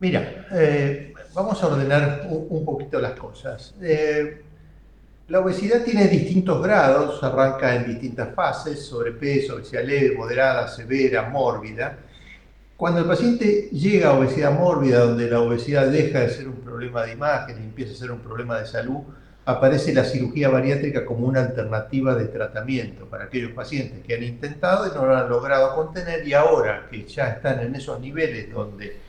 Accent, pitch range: Argentinian, 120-155 Hz